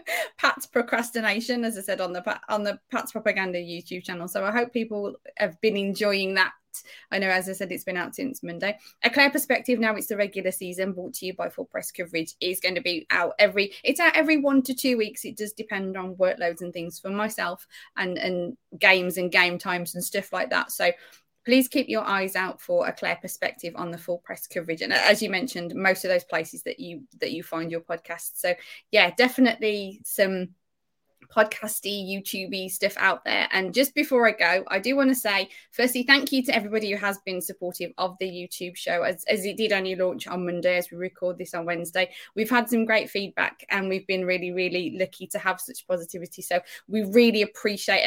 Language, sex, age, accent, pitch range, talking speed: English, female, 20-39, British, 180-220 Hz, 215 wpm